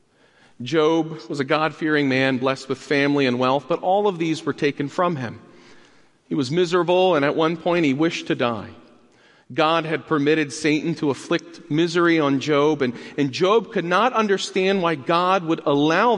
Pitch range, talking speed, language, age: 130-170 Hz, 180 wpm, English, 40-59